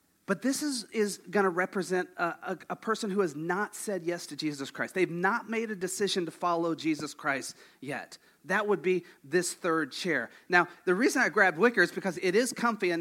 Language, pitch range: English, 165-210 Hz